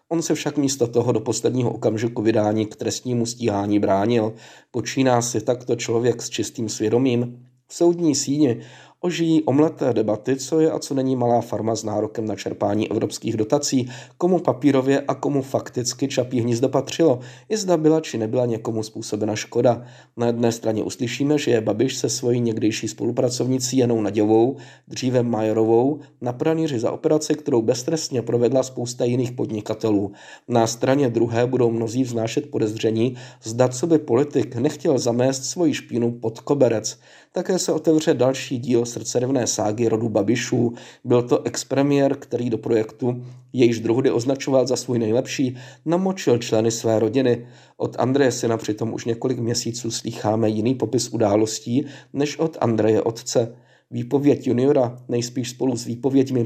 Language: Czech